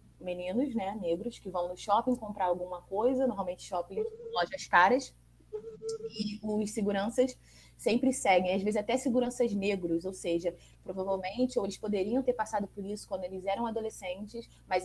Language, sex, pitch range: Portuguese, female, 180-245 Hz